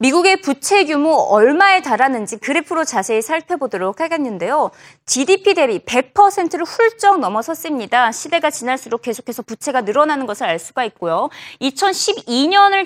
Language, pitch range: Korean, 235-365 Hz